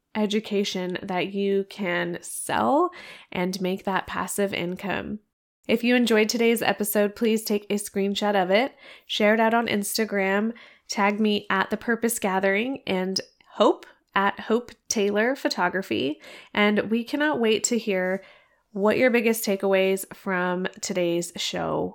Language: English